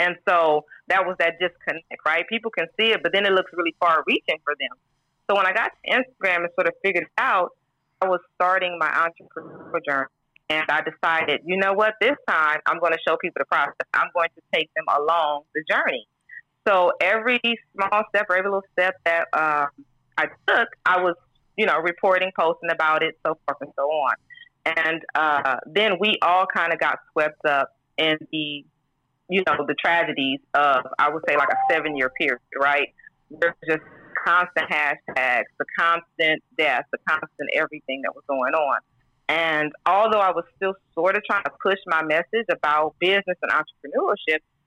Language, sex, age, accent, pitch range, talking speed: English, female, 30-49, American, 155-190 Hz, 190 wpm